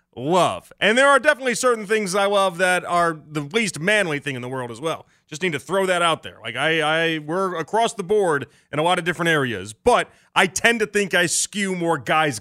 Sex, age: male, 30-49